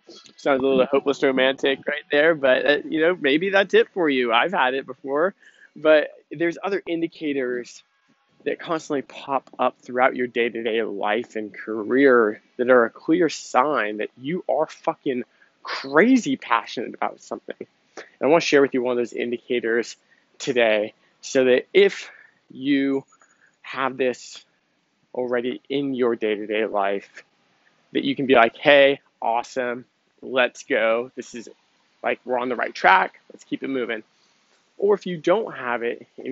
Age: 20-39